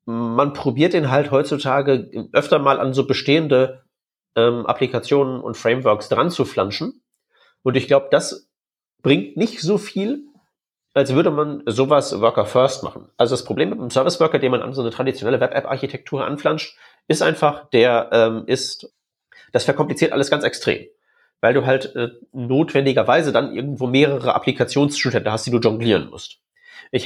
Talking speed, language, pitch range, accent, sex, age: 155 wpm, German, 120-150 Hz, German, male, 30-49